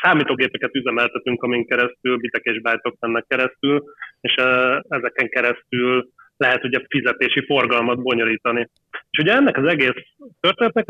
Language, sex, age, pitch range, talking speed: Hungarian, male, 30-49, 125-150 Hz, 115 wpm